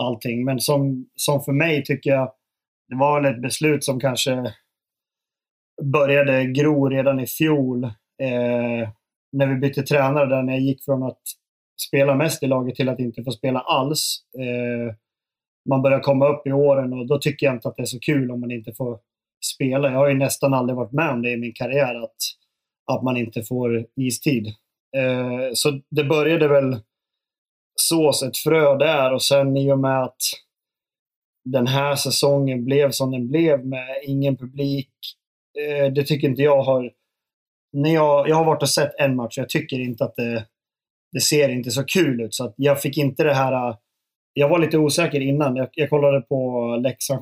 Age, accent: 30-49, native